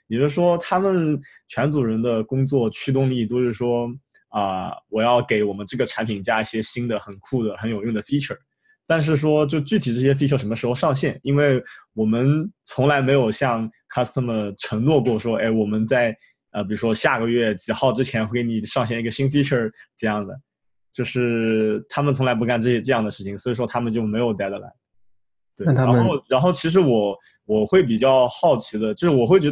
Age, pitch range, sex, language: 20-39, 110-135 Hz, male, Chinese